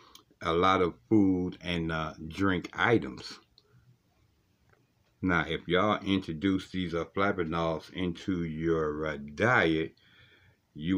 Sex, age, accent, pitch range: male, 60-79, American, 80-95 Hz